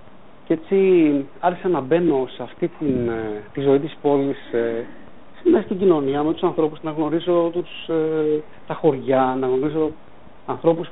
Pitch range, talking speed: 130-170 Hz, 150 wpm